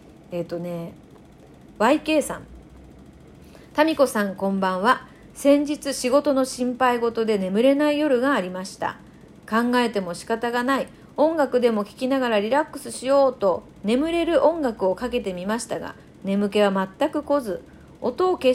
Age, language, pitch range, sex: 40-59, Japanese, 200-280 Hz, female